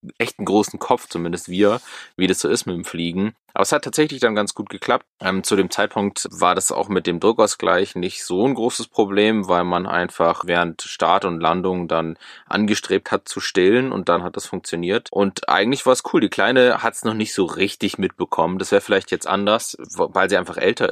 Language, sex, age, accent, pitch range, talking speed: German, male, 20-39, German, 90-115 Hz, 215 wpm